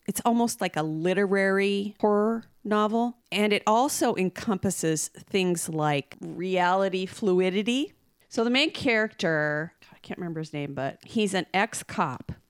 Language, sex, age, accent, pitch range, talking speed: English, female, 40-59, American, 165-215 Hz, 135 wpm